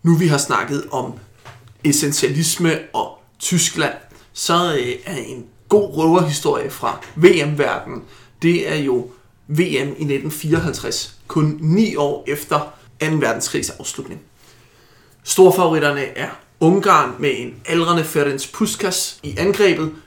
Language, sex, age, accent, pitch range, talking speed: Danish, male, 30-49, native, 150-190 Hz, 115 wpm